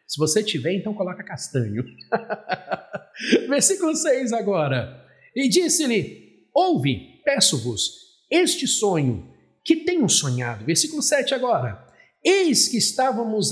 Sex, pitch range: male, 160-260 Hz